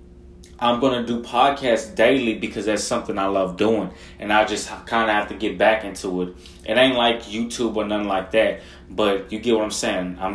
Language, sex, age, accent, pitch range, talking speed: English, male, 20-39, American, 90-135 Hz, 220 wpm